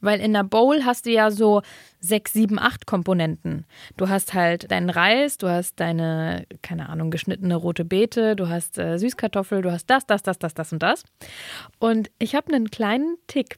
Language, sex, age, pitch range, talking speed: German, female, 20-39, 185-255 Hz, 195 wpm